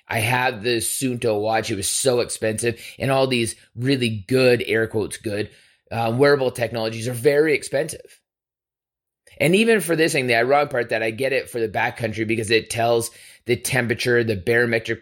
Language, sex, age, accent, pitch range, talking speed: English, male, 30-49, American, 110-135 Hz, 180 wpm